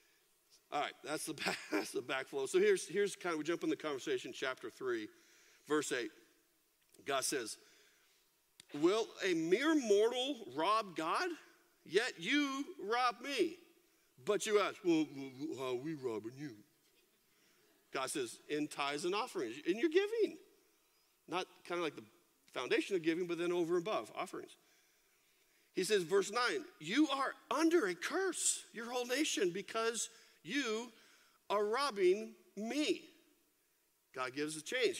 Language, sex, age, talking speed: English, male, 50-69, 150 wpm